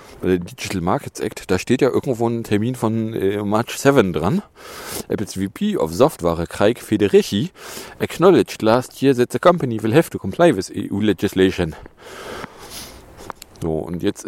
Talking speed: 150 wpm